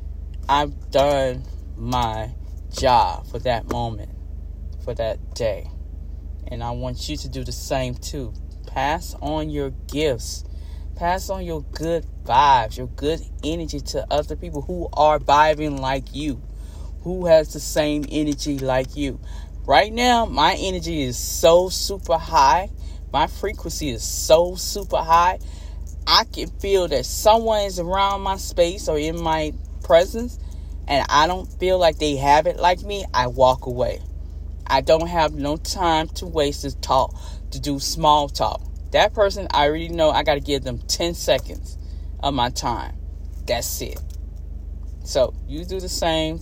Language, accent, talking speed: English, American, 155 wpm